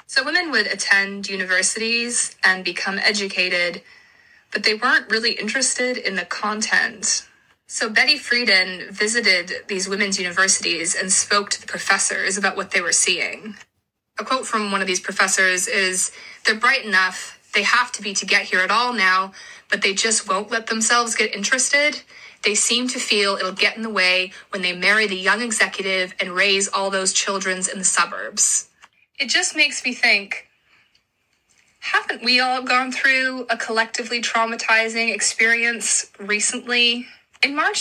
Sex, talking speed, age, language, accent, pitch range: female, 160 wpm, 20-39, English, American, 195-240 Hz